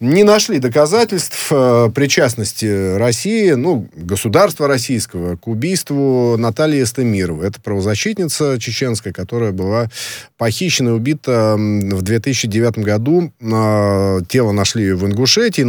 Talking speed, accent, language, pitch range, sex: 110 wpm, native, Russian, 100-135 Hz, male